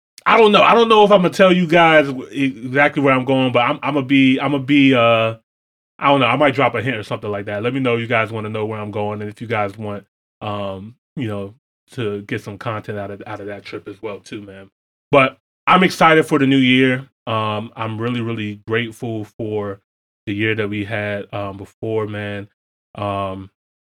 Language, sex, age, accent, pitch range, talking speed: English, male, 20-39, American, 100-130 Hz, 235 wpm